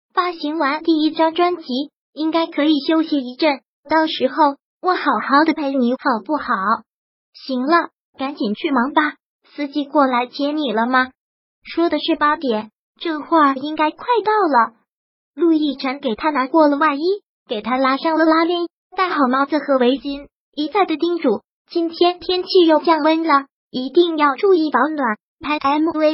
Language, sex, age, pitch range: Chinese, male, 20-39, 270-330 Hz